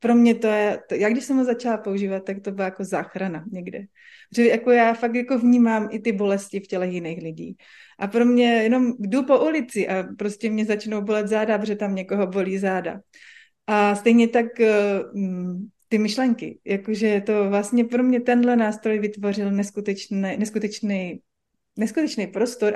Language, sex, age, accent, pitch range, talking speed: Czech, female, 30-49, native, 205-255 Hz, 170 wpm